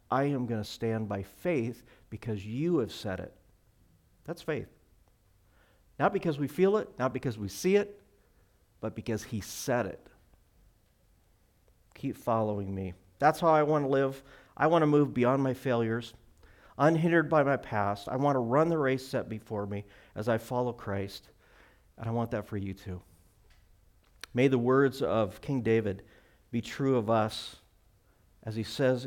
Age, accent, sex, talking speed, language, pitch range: 50-69, American, male, 170 wpm, English, 95-125 Hz